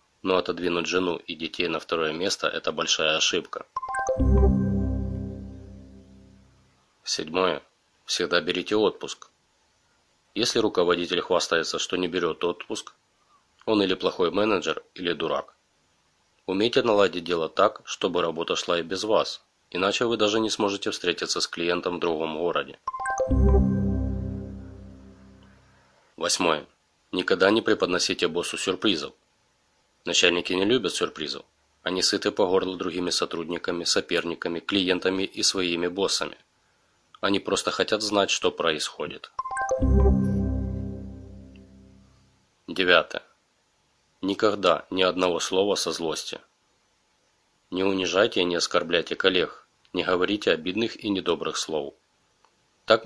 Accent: native